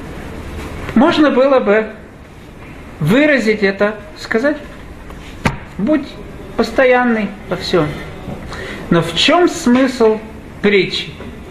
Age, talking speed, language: 40-59, 80 wpm, Russian